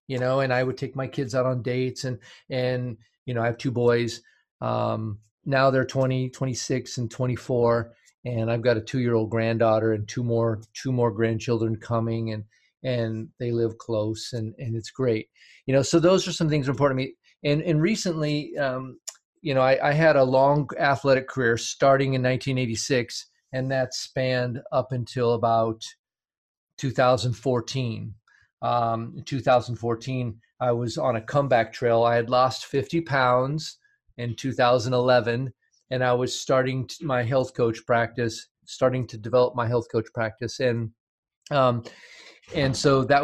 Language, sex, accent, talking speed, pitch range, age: English, male, American, 165 wpm, 115-130 Hz, 40-59